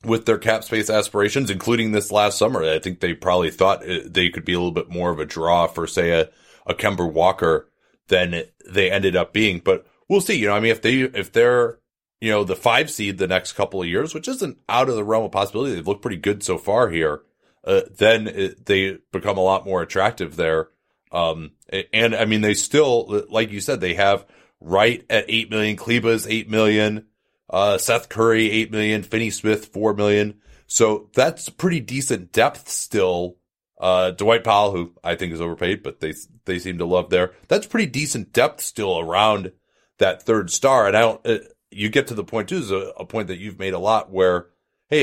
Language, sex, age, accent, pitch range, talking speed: English, male, 30-49, American, 95-120 Hz, 215 wpm